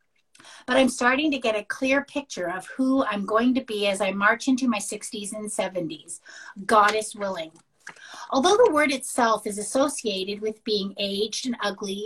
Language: English